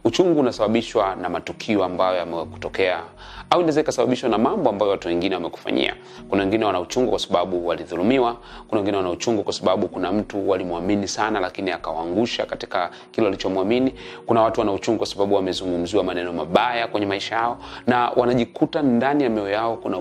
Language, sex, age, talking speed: Swahili, male, 30-49, 170 wpm